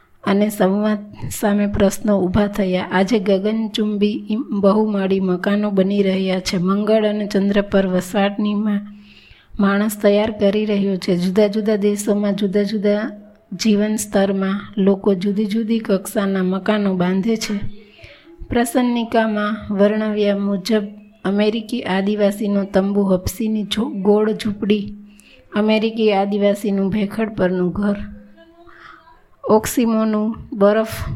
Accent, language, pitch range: native, Gujarati, 200-220 Hz